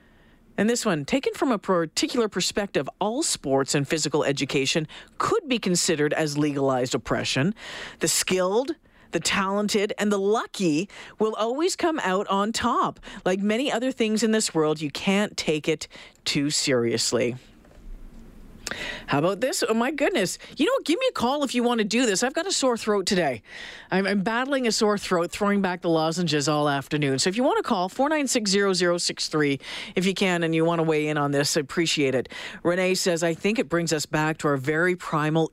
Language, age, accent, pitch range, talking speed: English, 40-59, American, 150-215 Hz, 205 wpm